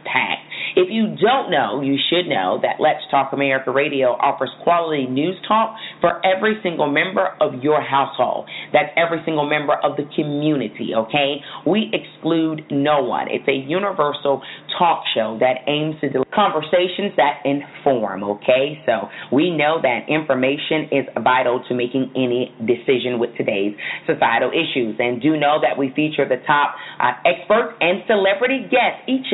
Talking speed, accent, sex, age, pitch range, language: 160 wpm, American, female, 30-49, 140-175 Hz, English